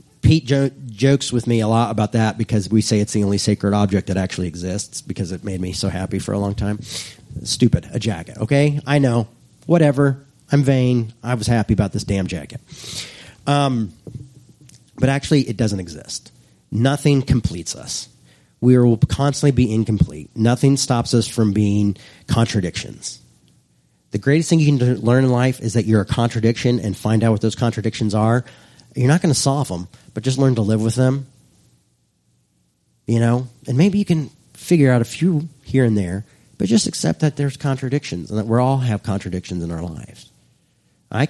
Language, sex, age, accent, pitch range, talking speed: English, male, 40-59, American, 100-135 Hz, 185 wpm